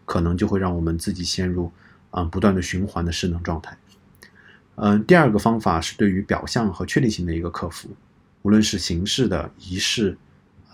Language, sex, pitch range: Chinese, male, 90-110 Hz